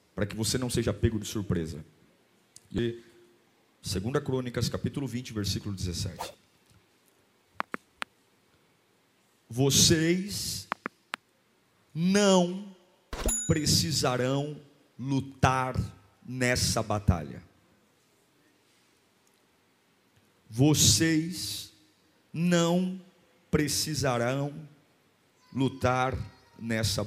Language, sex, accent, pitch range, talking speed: Portuguese, male, Brazilian, 105-170 Hz, 60 wpm